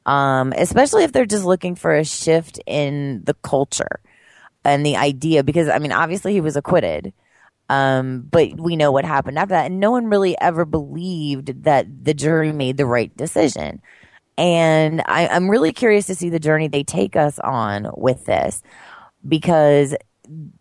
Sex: female